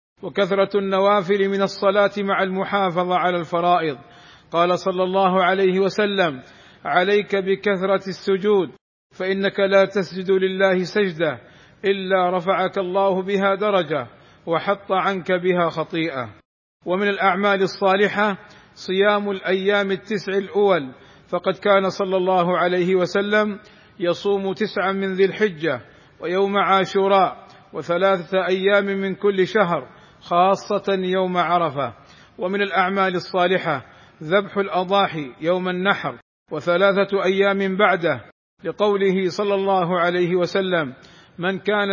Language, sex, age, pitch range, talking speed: Arabic, male, 50-69, 180-200 Hz, 105 wpm